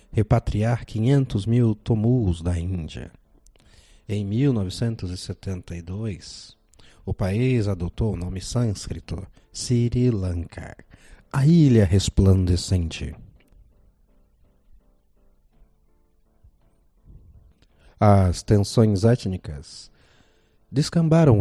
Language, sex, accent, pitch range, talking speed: Portuguese, male, Brazilian, 90-115 Hz, 65 wpm